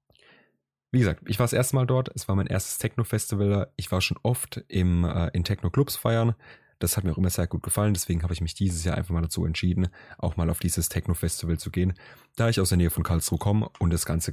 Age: 30-49